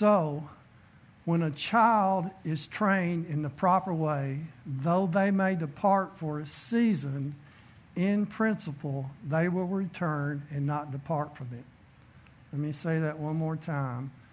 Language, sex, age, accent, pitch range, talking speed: English, male, 60-79, American, 140-175 Hz, 140 wpm